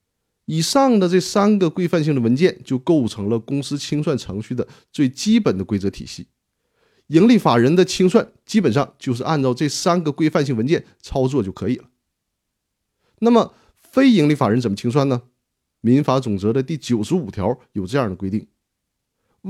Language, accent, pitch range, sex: Chinese, native, 125-185 Hz, male